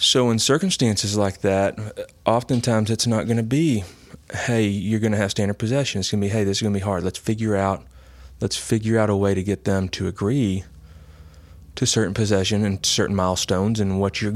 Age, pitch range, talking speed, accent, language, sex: 30-49, 95-110 Hz, 215 wpm, American, English, male